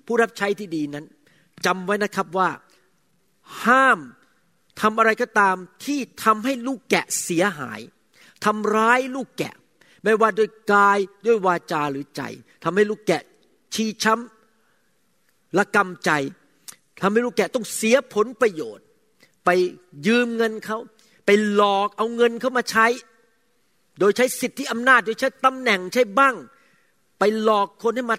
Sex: male